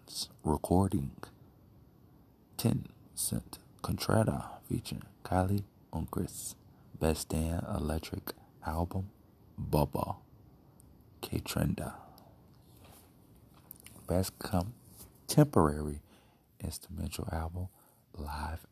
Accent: American